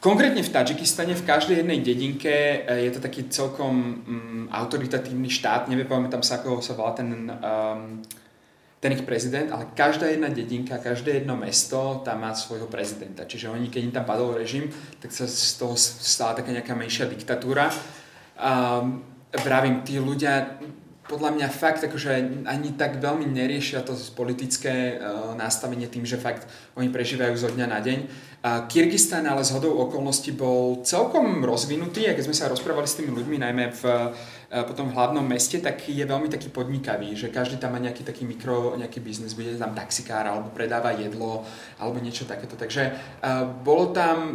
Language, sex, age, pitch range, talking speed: Slovak, male, 20-39, 120-145 Hz, 175 wpm